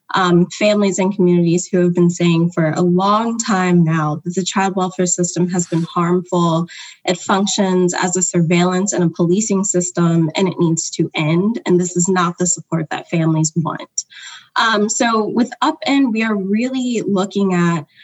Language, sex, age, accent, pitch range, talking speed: English, female, 10-29, American, 175-205 Hz, 180 wpm